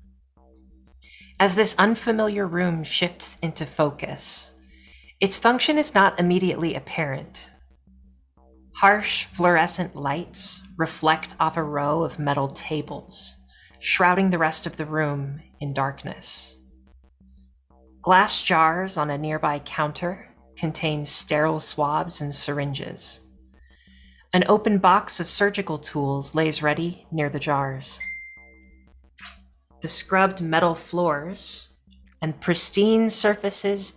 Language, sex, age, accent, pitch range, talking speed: English, female, 40-59, American, 130-180 Hz, 105 wpm